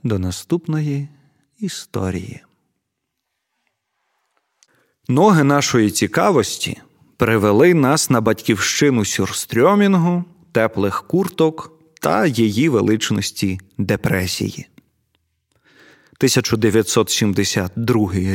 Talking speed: 60 wpm